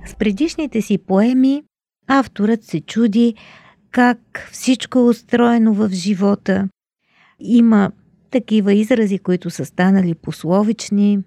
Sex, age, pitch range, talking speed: female, 50-69, 190-235 Hz, 105 wpm